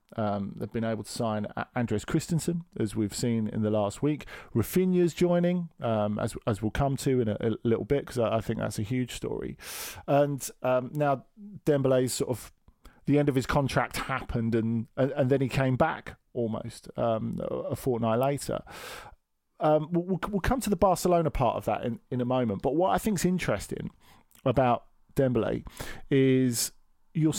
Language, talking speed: English, 180 wpm